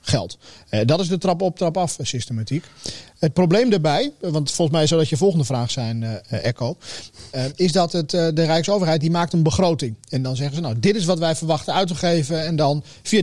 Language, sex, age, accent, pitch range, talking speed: Dutch, male, 40-59, Dutch, 145-180 Hz, 215 wpm